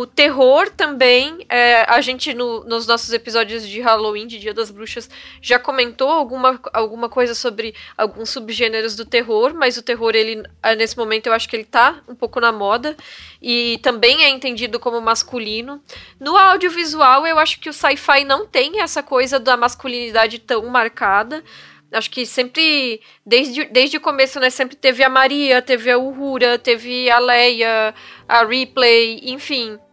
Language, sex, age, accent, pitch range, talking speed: Portuguese, female, 10-29, Brazilian, 230-290 Hz, 165 wpm